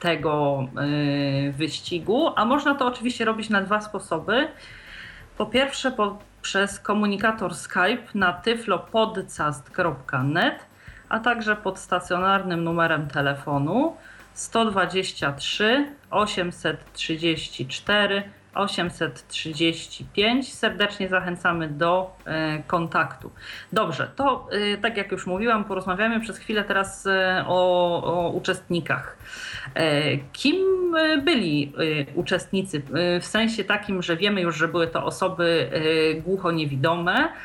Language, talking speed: Polish, 90 wpm